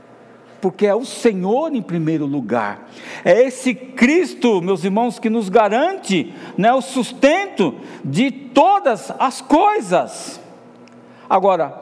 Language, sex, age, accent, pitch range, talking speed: Portuguese, male, 60-79, Brazilian, 185-260 Hz, 115 wpm